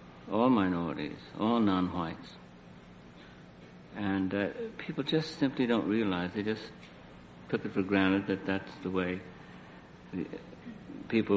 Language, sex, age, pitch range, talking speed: English, male, 60-79, 85-105 Hz, 115 wpm